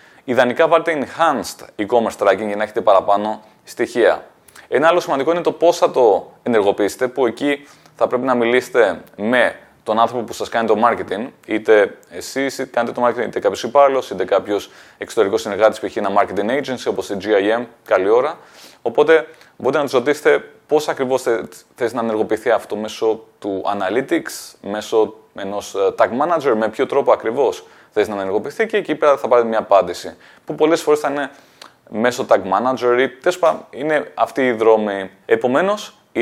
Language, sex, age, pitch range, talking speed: Greek, male, 20-39, 115-175 Hz, 175 wpm